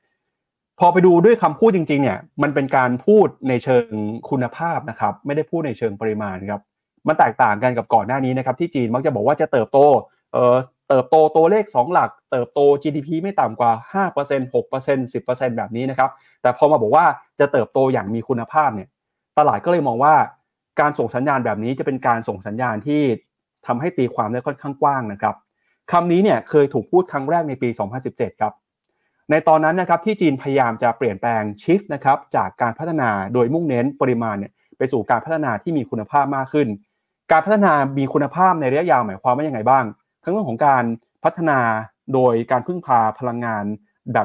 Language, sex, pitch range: Thai, male, 120-155 Hz